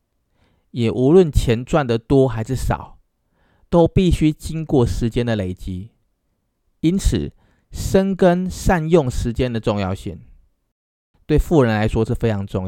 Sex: male